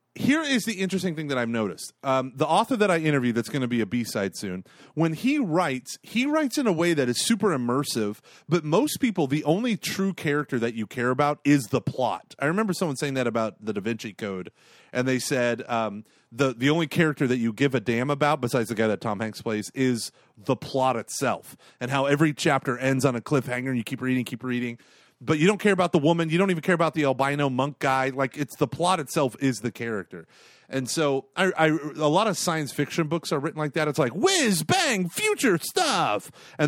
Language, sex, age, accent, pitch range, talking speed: English, male, 30-49, American, 130-180 Hz, 230 wpm